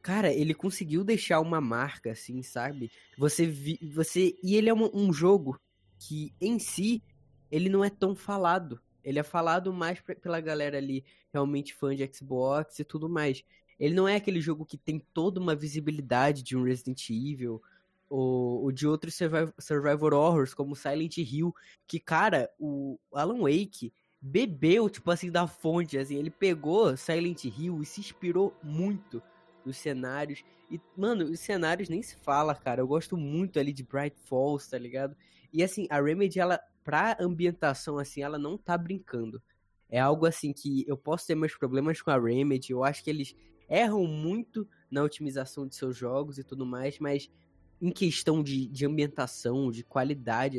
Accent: Brazilian